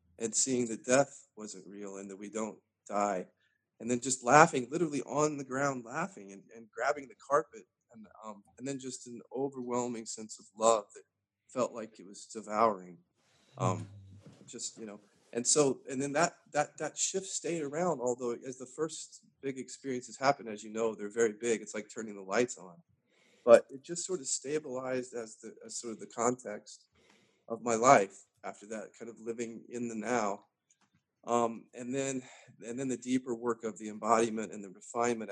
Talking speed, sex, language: 190 wpm, male, English